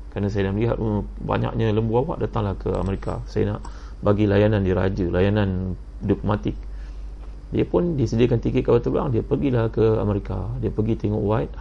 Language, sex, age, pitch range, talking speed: Malay, male, 30-49, 90-115 Hz, 165 wpm